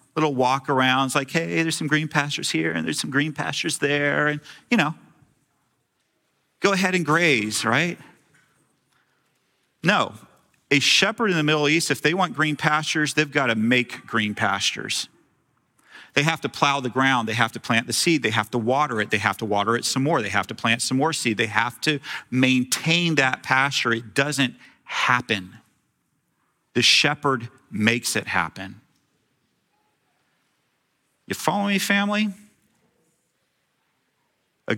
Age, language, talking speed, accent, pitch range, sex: 40-59, English, 160 wpm, American, 120-155 Hz, male